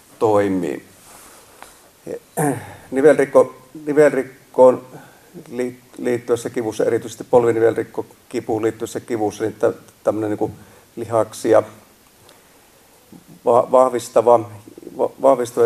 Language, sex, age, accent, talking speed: Finnish, male, 40-59, native, 55 wpm